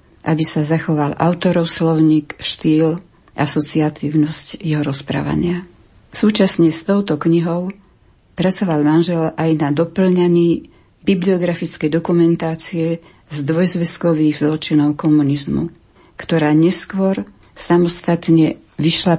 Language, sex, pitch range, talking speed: Slovak, female, 155-175 Hz, 90 wpm